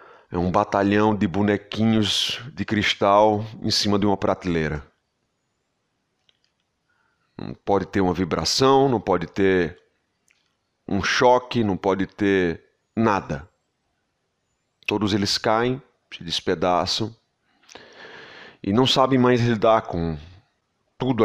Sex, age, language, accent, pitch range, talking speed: male, 30-49, Portuguese, Brazilian, 90-110 Hz, 105 wpm